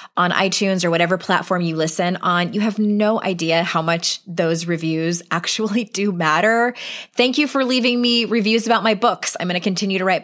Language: English